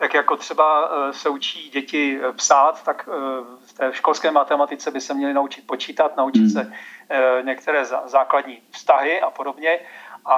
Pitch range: 140-165 Hz